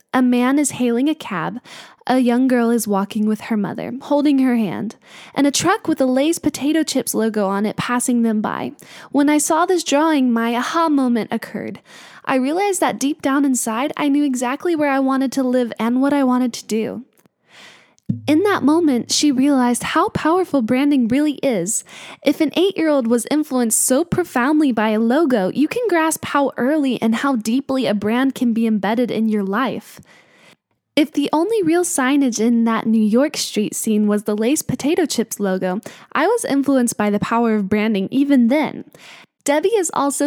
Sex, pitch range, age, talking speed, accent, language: female, 230-295 Hz, 10-29, 190 wpm, American, English